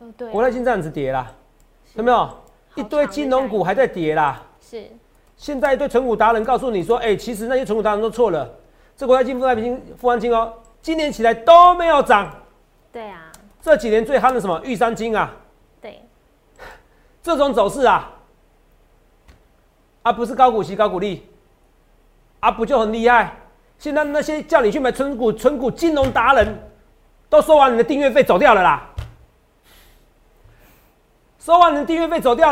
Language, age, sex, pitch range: Chinese, 40-59, male, 185-265 Hz